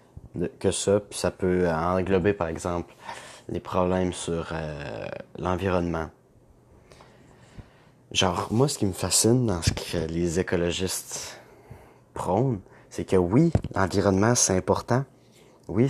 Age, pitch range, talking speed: 30-49, 90-120 Hz, 120 wpm